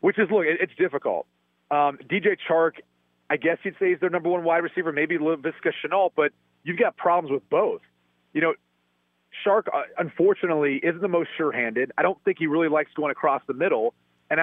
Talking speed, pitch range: 190 wpm, 130-170 Hz